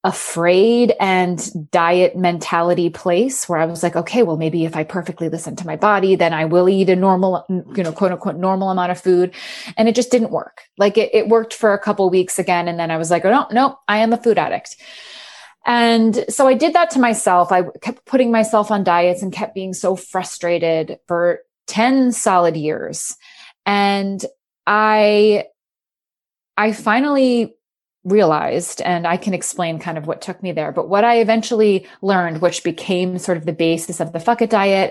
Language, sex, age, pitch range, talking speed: English, female, 30-49, 175-220 Hz, 195 wpm